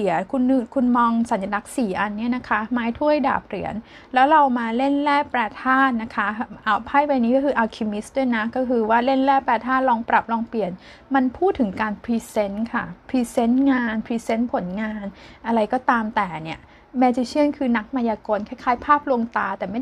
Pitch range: 215-265 Hz